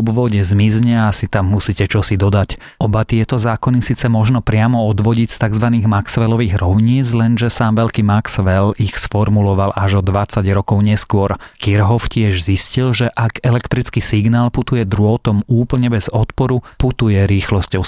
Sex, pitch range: male, 100-115 Hz